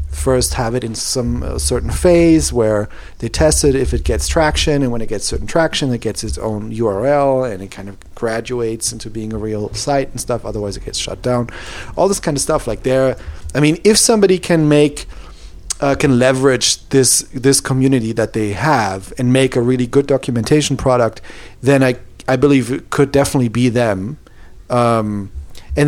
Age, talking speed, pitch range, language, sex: 40-59, 195 wpm, 115-150 Hz, English, male